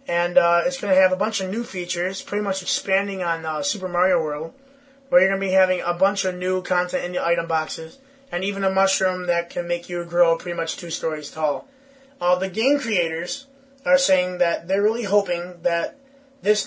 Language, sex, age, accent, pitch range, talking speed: English, male, 20-39, American, 175-270 Hz, 215 wpm